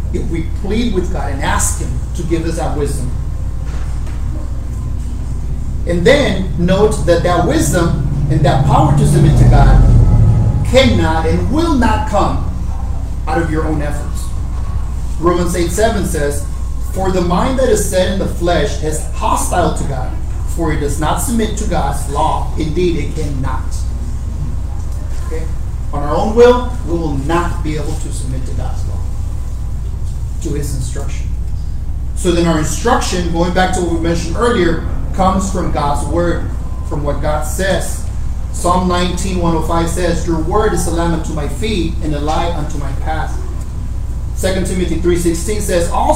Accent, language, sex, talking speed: American, English, male, 165 wpm